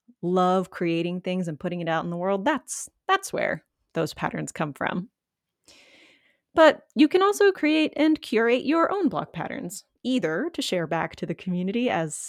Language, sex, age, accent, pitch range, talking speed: English, female, 20-39, American, 180-270 Hz, 175 wpm